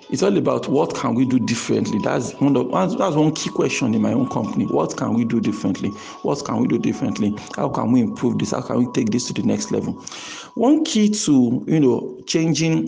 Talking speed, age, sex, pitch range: 230 wpm, 50-69, male, 120-155 Hz